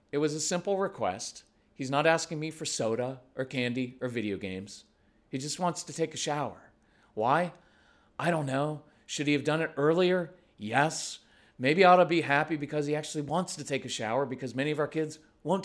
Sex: male